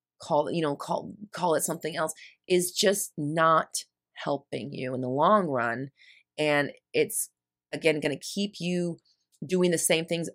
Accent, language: American, English